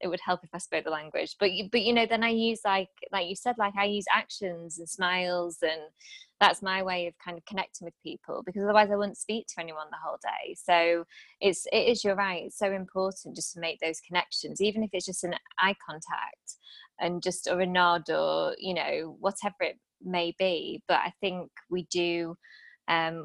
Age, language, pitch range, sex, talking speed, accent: 20-39, English, 170-200 Hz, female, 220 wpm, British